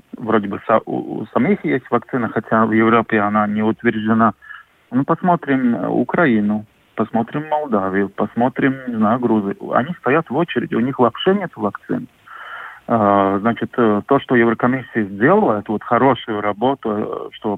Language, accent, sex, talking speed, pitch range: Russian, native, male, 140 wpm, 110-140 Hz